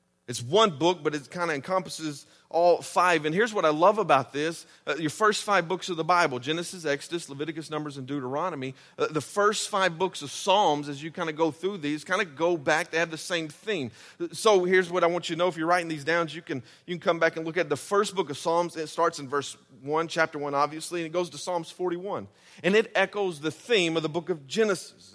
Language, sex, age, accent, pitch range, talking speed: English, male, 40-59, American, 145-180 Hz, 250 wpm